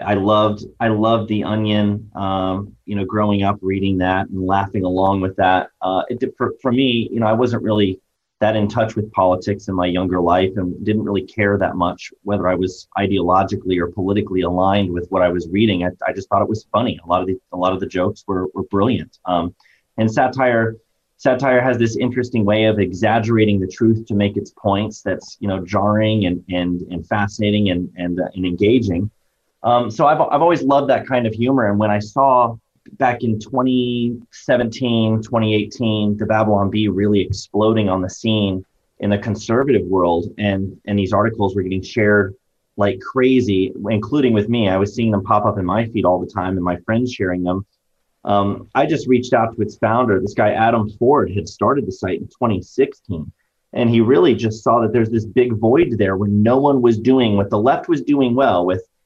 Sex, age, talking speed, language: male, 30-49, 205 wpm, English